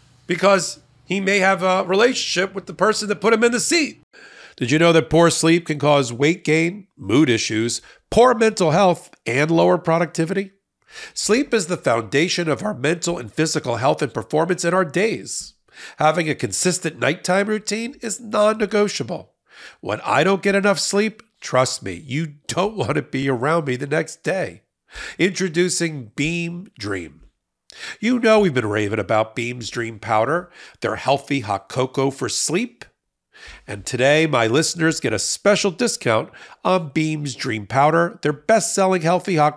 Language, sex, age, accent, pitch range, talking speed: English, male, 50-69, American, 140-195 Hz, 165 wpm